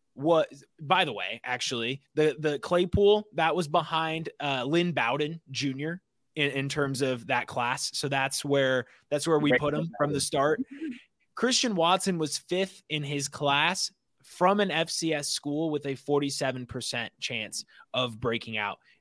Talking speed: 160 wpm